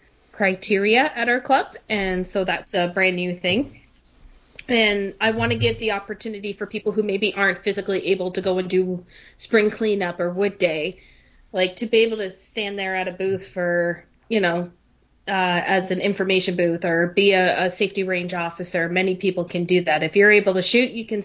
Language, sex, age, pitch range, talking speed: English, female, 30-49, 180-215 Hz, 200 wpm